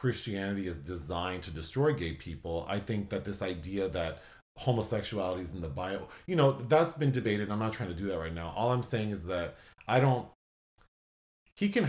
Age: 30-49